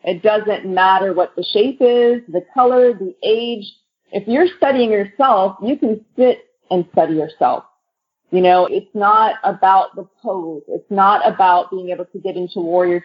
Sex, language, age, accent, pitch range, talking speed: female, English, 30-49, American, 175-220 Hz, 170 wpm